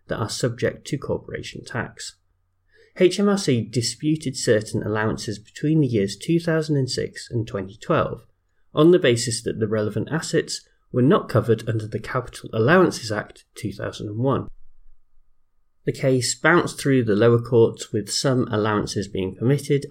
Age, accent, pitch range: 30-49, British, 105-140 Hz